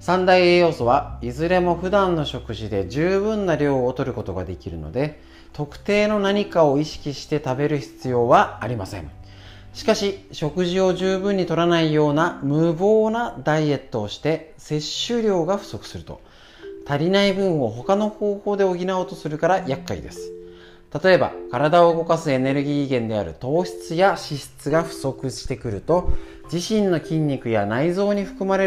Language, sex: Japanese, male